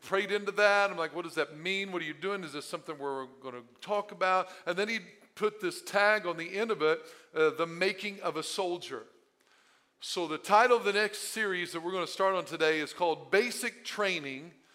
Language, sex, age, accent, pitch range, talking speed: English, male, 40-59, American, 165-205 Hz, 230 wpm